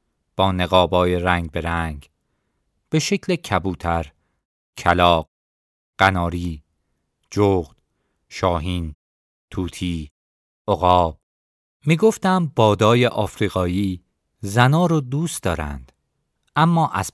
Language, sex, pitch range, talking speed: Persian, male, 80-125 Hz, 80 wpm